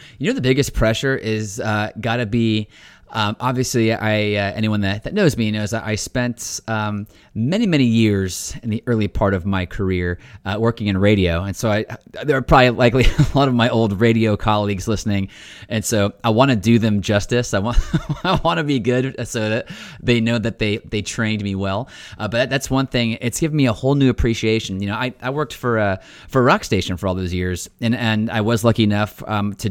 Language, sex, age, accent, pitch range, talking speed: English, male, 30-49, American, 100-120 Hz, 230 wpm